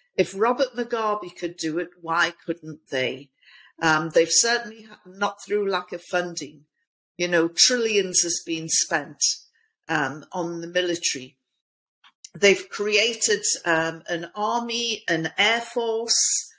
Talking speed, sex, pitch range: 125 wpm, female, 170-215 Hz